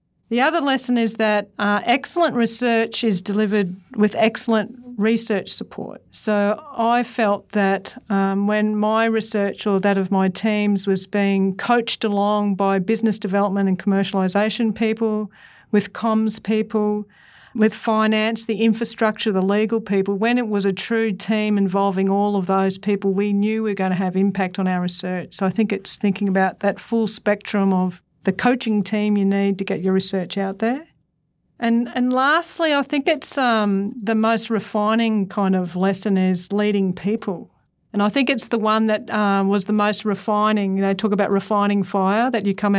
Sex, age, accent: female, 50-69, Australian